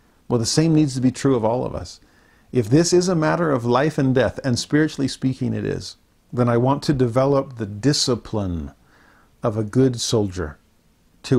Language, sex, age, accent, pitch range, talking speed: English, male, 50-69, American, 110-145 Hz, 195 wpm